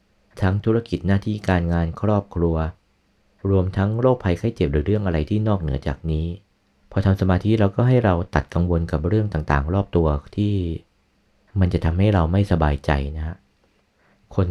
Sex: male